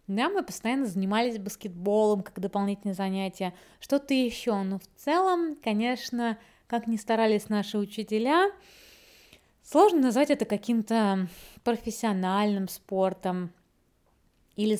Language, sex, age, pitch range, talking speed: Russian, female, 20-39, 195-250 Hz, 105 wpm